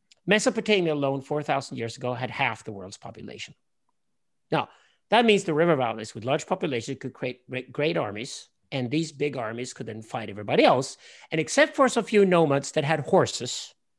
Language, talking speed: English, 180 wpm